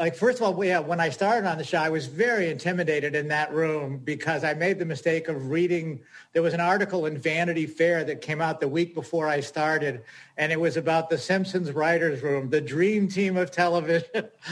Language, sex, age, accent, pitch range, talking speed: English, male, 50-69, American, 160-185 Hz, 220 wpm